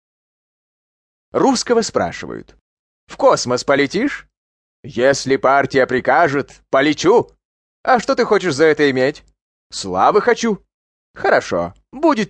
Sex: male